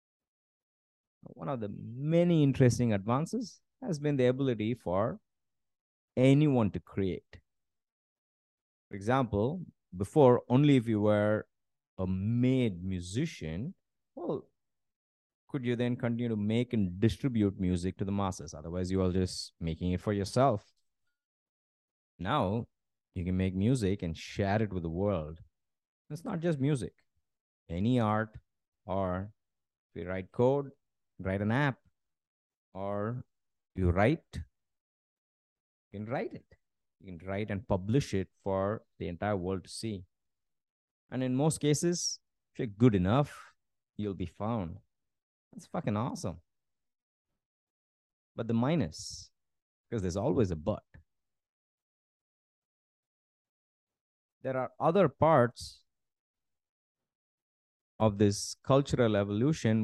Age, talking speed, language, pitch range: 30-49, 120 wpm, English, 95-125 Hz